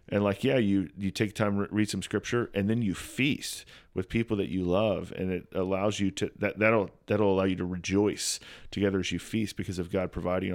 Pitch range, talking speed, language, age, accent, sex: 95-110 Hz, 235 wpm, English, 30-49, American, male